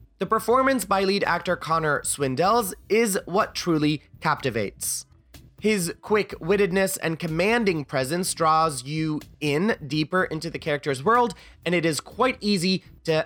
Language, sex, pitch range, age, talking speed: English, male, 145-190 Hz, 20-39, 135 wpm